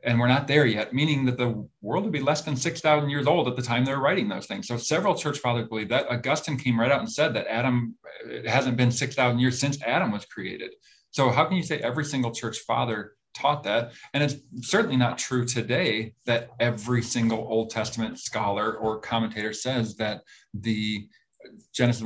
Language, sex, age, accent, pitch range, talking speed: English, male, 40-59, American, 115-135 Hz, 205 wpm